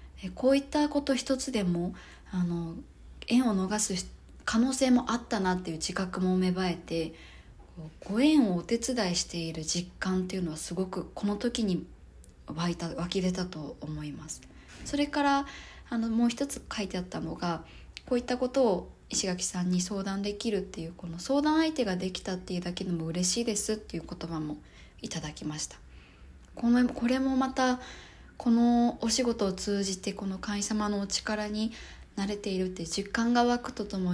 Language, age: Japanese, 20-39